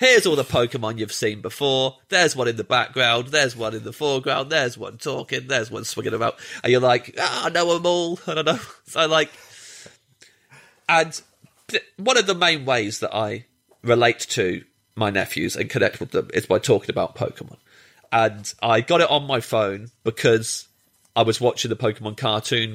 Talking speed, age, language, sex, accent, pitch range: 185 wpm, 30-49, English, male, British, 110-130 Hz